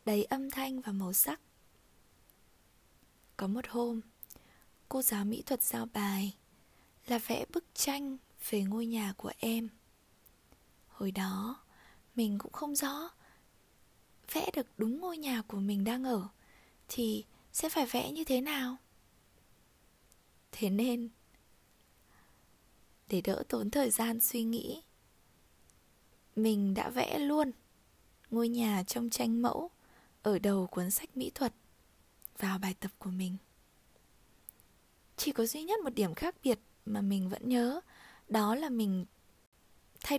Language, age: Vietnamese, 20-39